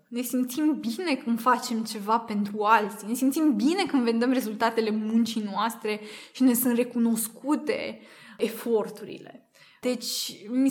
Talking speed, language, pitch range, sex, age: 130 wpm, Romanian, 220-255 Hz, female, 20-39